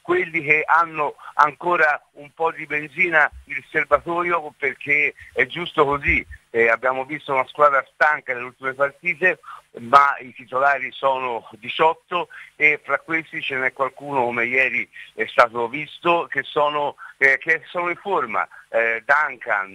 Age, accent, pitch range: 60-79, native, 125-165 Hz